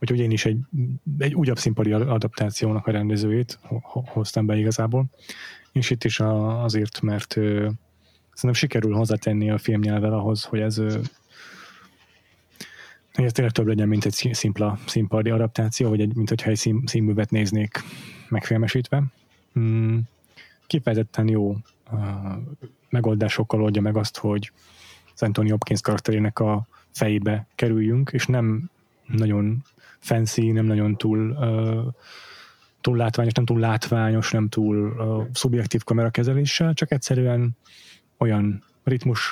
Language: Hungarian